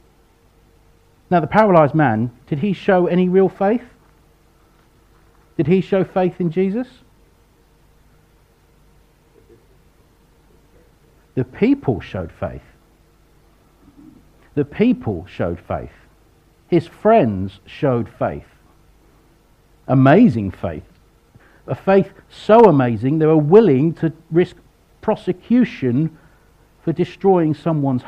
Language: English